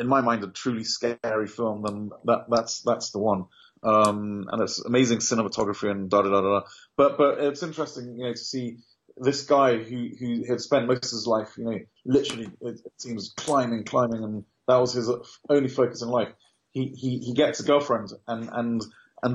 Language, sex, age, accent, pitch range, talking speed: English, male, 30-49, British, 110-125 Hz, 205 wpm